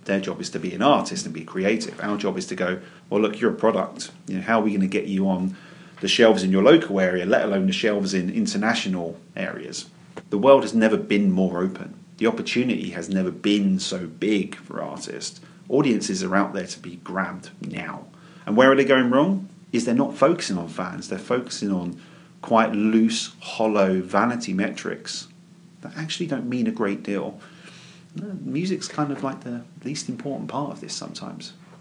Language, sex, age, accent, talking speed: English, male, 40-59, British, 195 wpm